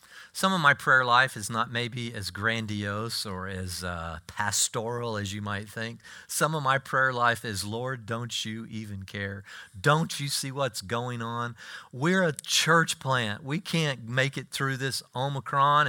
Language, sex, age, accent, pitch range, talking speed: English, male, 40-59, American, 105-150 Hz, 175 wpm